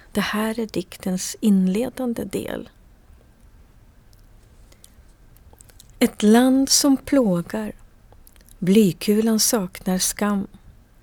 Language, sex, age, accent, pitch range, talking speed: Swedish, female, 40-59, native, 190-225 Hz, 70 wpm